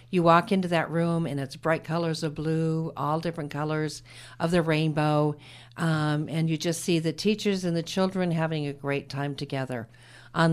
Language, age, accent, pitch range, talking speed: English, 50-69, American, 145-170 Hz, 190 wpm